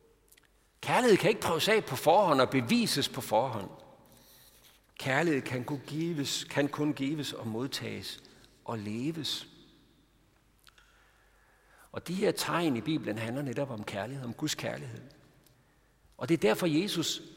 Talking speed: 140 wpm